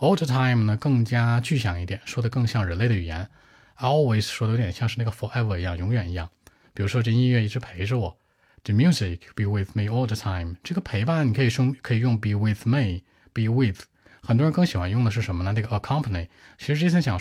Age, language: 20-39, Chinese